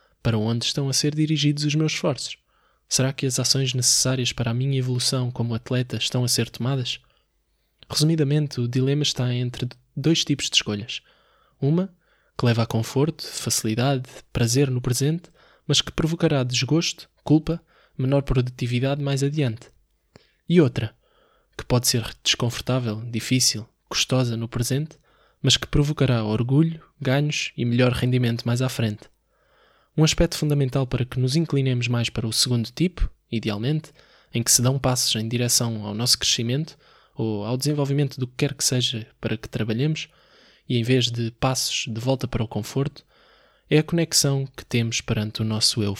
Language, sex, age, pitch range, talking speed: Portuguese, male, 20-39, 120-145 Hz, 165 wpm